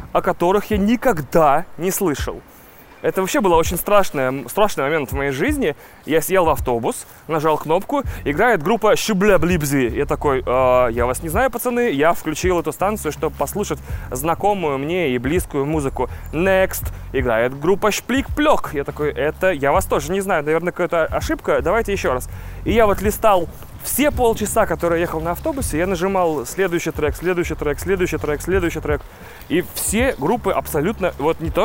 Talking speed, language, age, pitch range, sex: 175 wpm, Russian, 20-39, 145-200 Hz, male